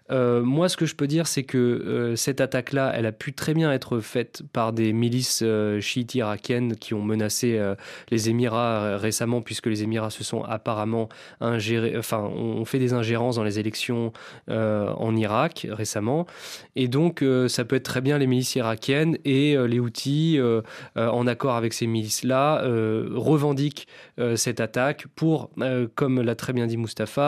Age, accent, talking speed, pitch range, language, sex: 20-39, French, 190 wpm, 115-145 Hz, French, male